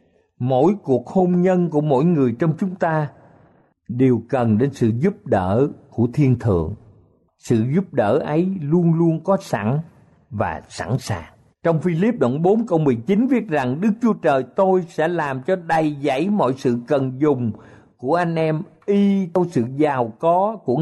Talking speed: 175 wpm